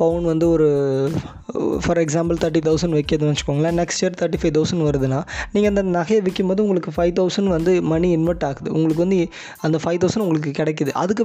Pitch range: 150-185 Hz